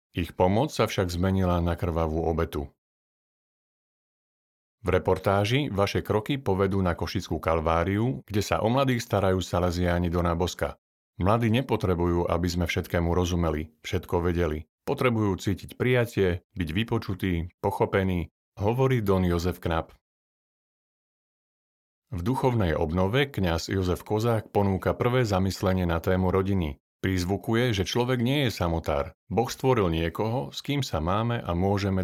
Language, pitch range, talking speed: Slovak, 85-105 Hz, 130 wpm